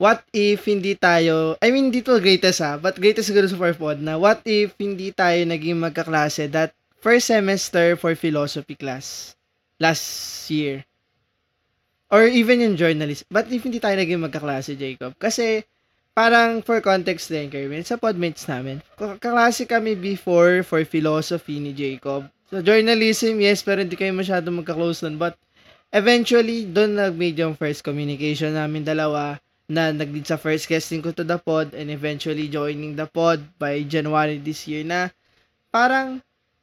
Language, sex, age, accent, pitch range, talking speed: Filipino, male, 20-39, native, 155-215 Hz, 155 wpm